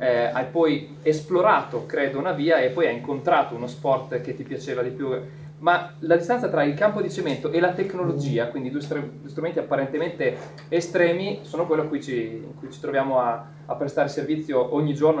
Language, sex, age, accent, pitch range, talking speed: Italian, male, 20-39, native, 145-165 Hz, 185 wpm